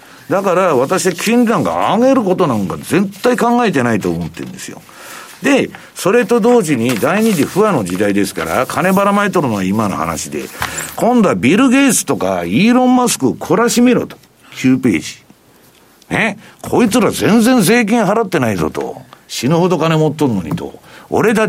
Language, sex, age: Japanese, male, 60-79